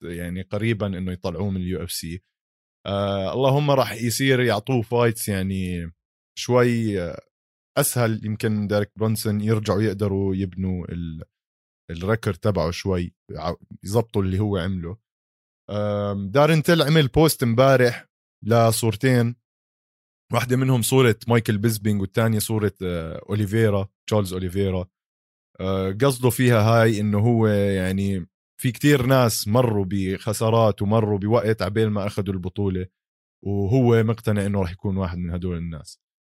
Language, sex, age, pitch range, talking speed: Arabic, male, 20-39, 95-120 Hz, 120 wpm